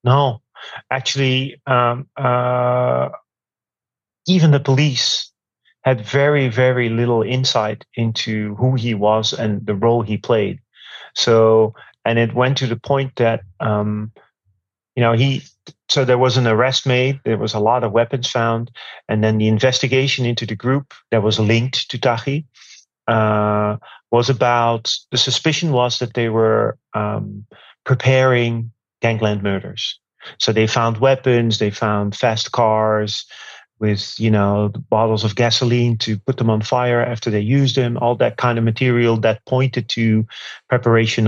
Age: 30-49